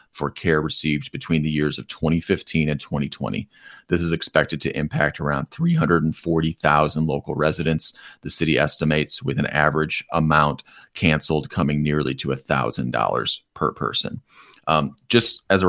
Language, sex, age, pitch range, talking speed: English, male, 30-49, 80-100 Hz, 140 wpm